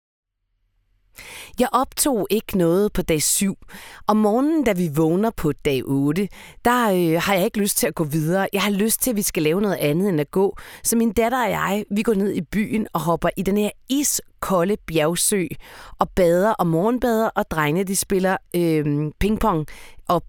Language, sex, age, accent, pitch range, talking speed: Danish, female, 30-49, native, 165-225 Hz, 200 wpm